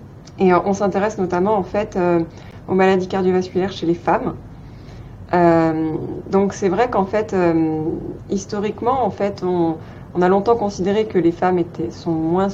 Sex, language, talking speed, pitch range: female, French, 165 wpm, 160-195 Hz